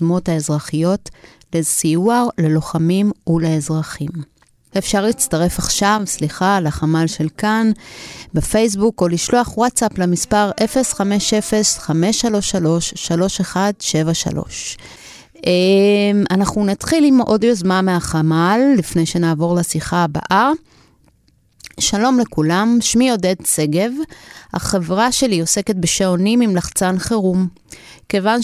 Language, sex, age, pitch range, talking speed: Hebrew, female, 30-49, 170-215 Hz, 70 wpm